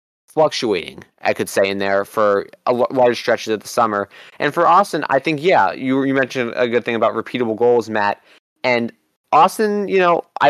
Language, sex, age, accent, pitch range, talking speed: English, male, 20-39, American, 110-145 Hz, 195 wpm